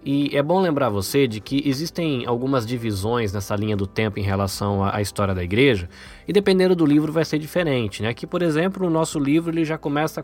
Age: 20-39